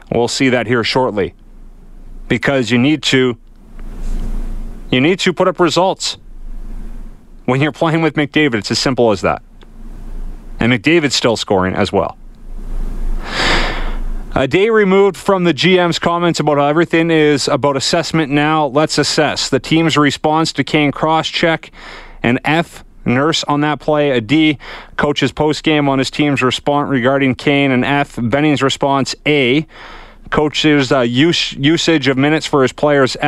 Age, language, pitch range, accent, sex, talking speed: 30-49, English, 120-150 Hz, American, male, 155 wpm